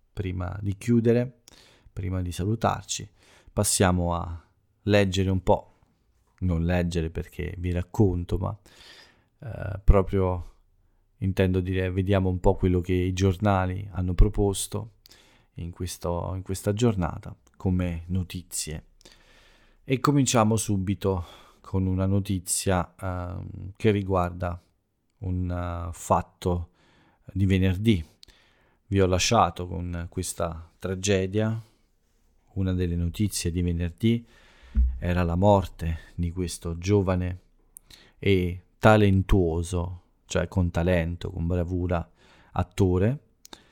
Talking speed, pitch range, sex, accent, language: 100 wpm, 90-100 Hz, male, native, Italian